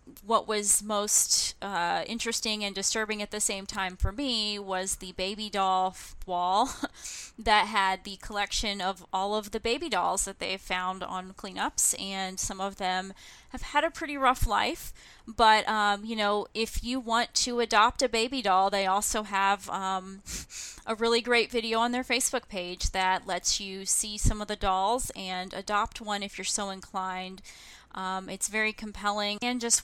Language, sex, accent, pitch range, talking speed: English, female, American, 190-230 Hz, 175 wpm